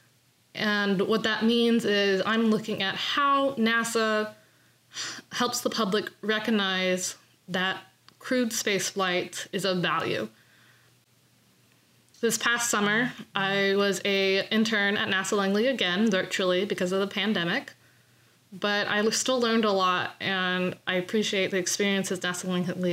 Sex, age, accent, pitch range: female, 20-39, American, 185-225 Hz